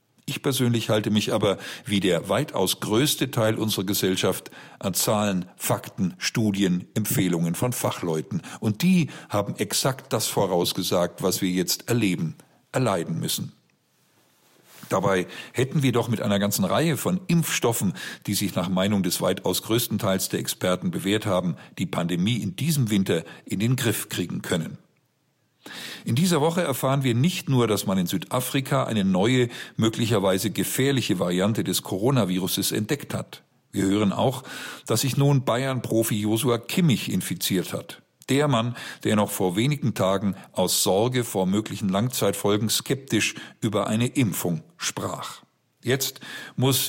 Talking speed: 145 wpm